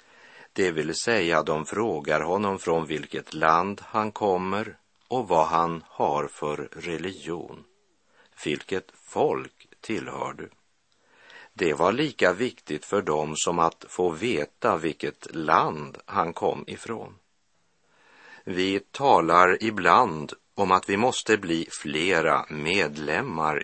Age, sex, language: 50-69, male, Swedish